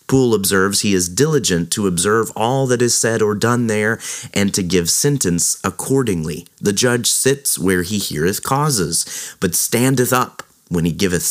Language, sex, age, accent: English, male, 30-49, American